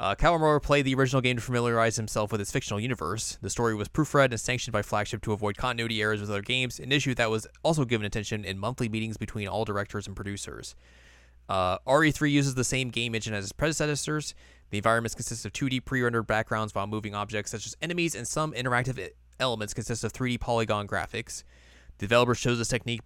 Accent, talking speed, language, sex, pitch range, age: American, 210 wpm, English, male, 105-130 Hz, 20-39